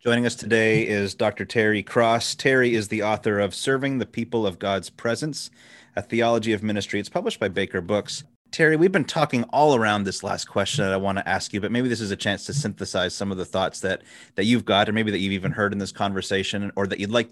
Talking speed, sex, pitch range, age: 245 wpm, male, 100-115 Hz, 30-49